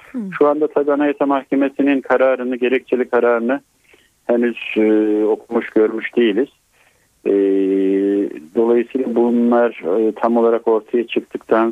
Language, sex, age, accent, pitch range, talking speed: Turkish, male, 50-69, native, 105-125 Hz, 95 wpm